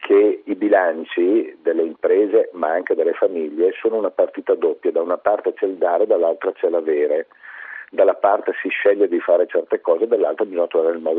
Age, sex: 50-69, male